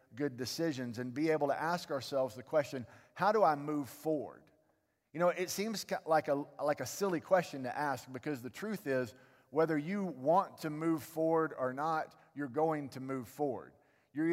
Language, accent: English, American